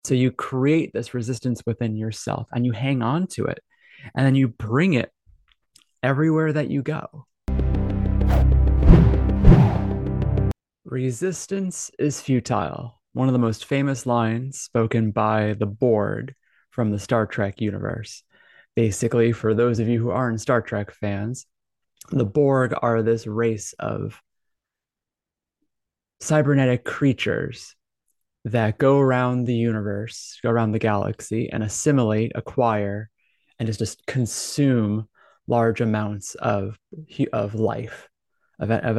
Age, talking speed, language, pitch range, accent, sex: 20-39, 125 wpm, English, 110-130 Hz, American, male